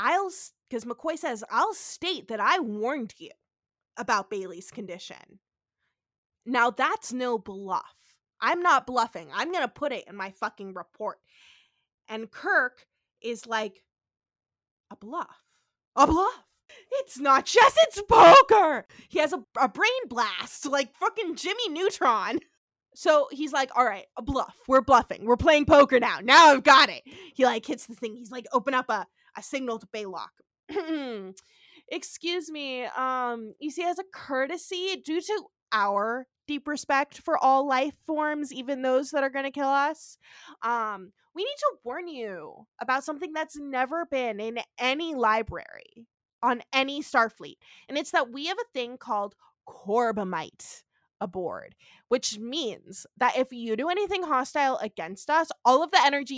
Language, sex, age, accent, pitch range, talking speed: English, female, 20-39, American, 235-315 Hz, 160 wpm